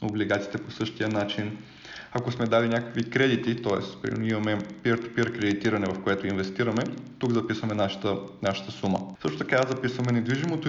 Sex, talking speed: male, 145 wpm